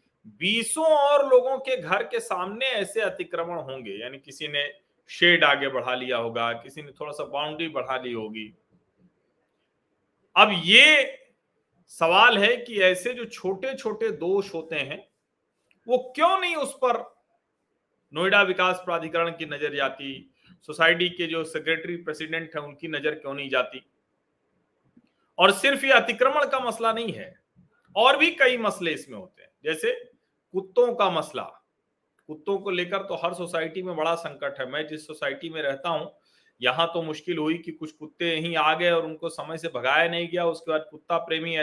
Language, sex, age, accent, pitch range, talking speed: Hindi, male, 40-59, native, 155-205 Hz, 135 wpm